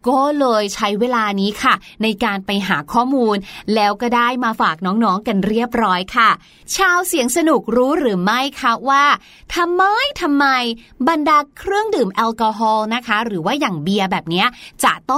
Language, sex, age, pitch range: Thai, female, 20-39, 235-315 Hz